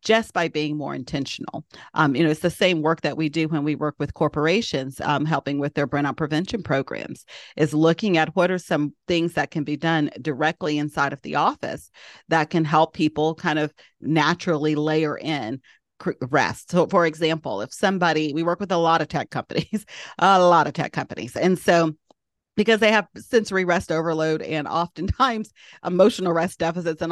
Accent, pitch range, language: American, 155-185 Hz, English